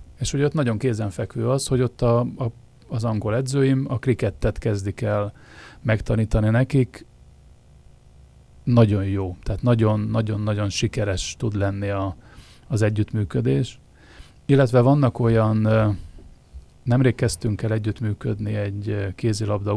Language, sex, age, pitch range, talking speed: Hungarian, male, 30-49, 105-120 Hz, 115 wpm